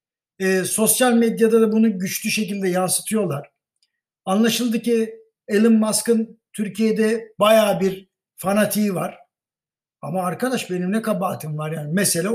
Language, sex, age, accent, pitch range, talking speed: Turkish, male, 60-79, native, 180-225 Hz, 120 wpm